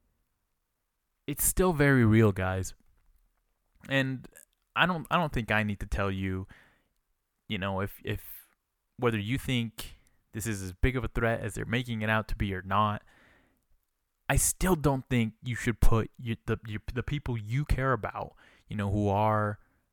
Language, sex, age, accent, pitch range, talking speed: English, male, 20-39, American, 95-120 Hz, 175 wpm